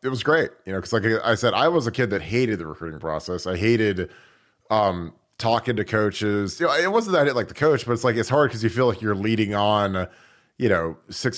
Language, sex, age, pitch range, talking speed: English, male, 30-49, 90-115 Hz, 255 wpm